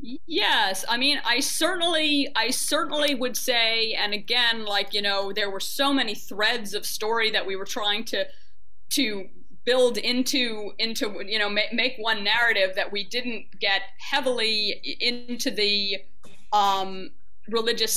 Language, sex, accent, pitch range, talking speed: English, female, American, 200-255 Hz, 145 wpm